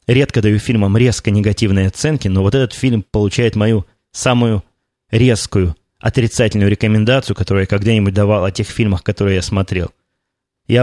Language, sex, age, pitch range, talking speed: Russian, male, 20-39, 100-120 Hz, 150 wpm